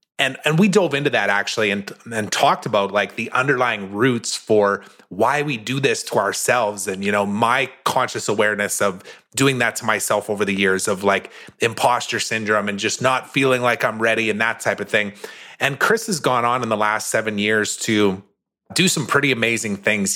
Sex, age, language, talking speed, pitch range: male, 30-49, English, 200 wpm, 105-130 Hz